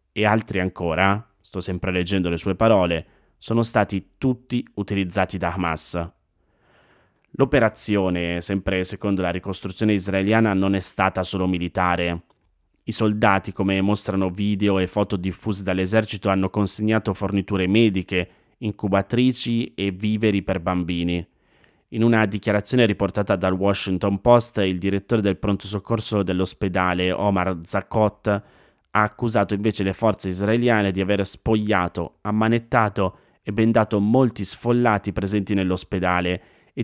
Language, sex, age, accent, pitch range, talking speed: Italian, male, 30-49, native, 95-110 Hz, 125 wpm